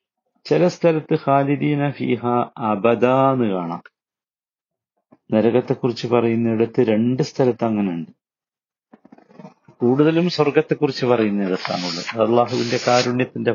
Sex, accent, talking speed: male, native, 90 wpm